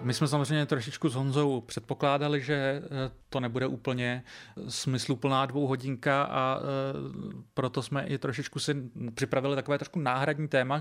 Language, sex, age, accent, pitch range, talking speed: Czech, male, 30-49, native, 120-135 Hz, 135 wpm